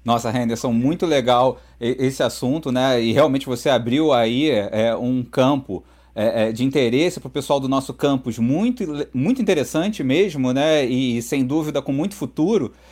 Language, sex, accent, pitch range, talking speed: Portuguese, male, Brazilian, 130-155 Hz, 165 wpm